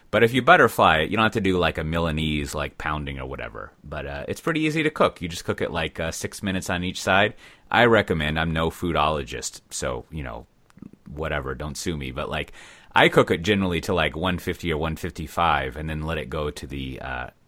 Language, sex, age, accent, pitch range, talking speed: English, male, 30-49, American, 75-95 Hz, 225 wpm